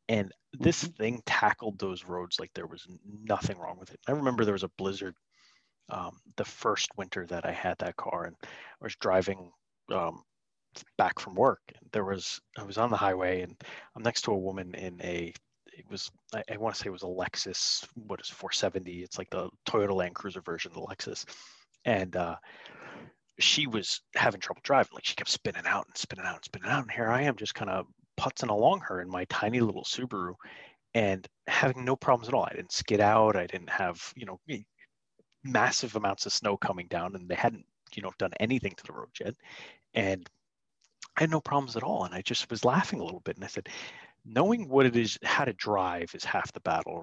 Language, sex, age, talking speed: English, male, 30-49, 215 wpm